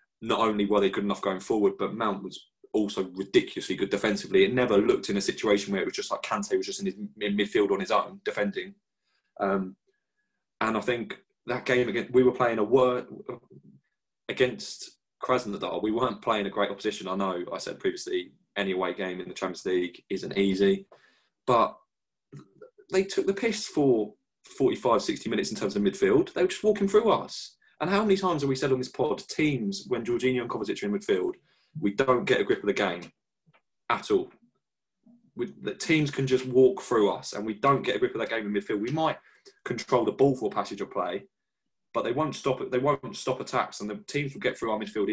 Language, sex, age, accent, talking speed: English, male, 20-39, British, 215 wpm